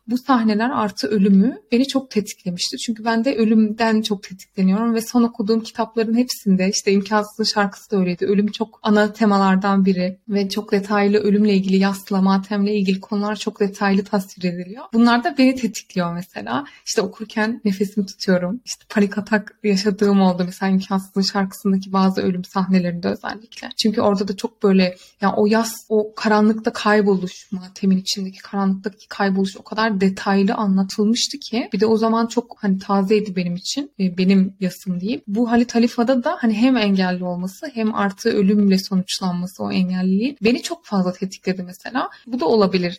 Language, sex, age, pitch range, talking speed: Turkish, female, 20-39, 190-220 Hz, 160 wpm